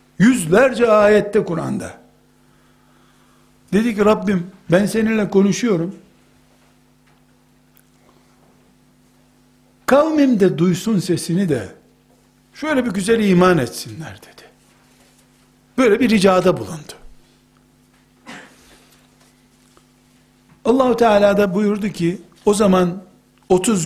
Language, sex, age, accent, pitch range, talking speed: Turkish, male, 60-79, native, 145-210 Hz, 80 wpm